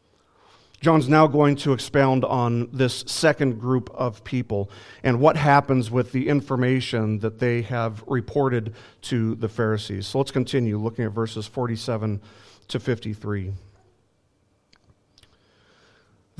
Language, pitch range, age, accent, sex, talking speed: English, 110-150 Hz, 40-59, American, male, 120 wpm